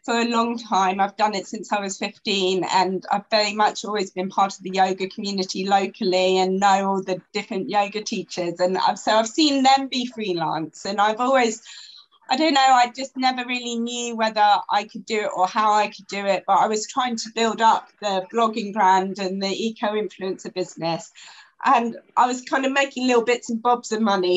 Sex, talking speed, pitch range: female, 210 wpm, 190-235 Hz